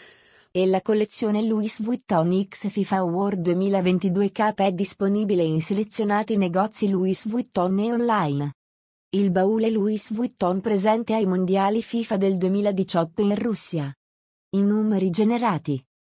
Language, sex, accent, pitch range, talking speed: Italian, female, native, 185-220 Hz, 125 wpm